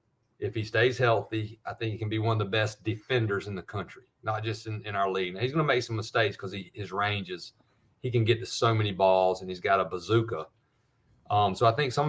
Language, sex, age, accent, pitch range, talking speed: English, male, 40-59, American, 95-120 Hz, 260 wpm